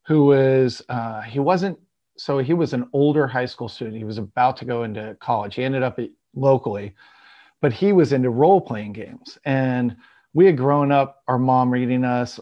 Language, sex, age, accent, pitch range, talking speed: English, male, 40-59, American, 120-145 Hz, 195 wpm